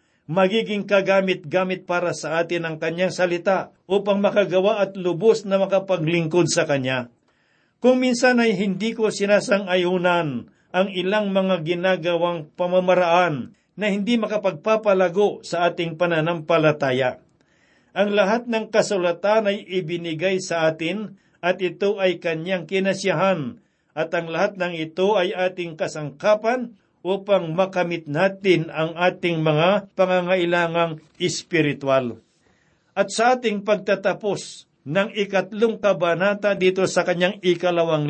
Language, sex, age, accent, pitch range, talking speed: Filipino, male, 50-69, native, 170-200 Hz, 115 wpm